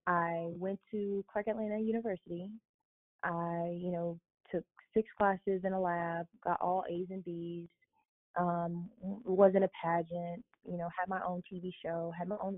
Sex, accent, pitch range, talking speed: female, American, 170-190 Hz, 160 wpm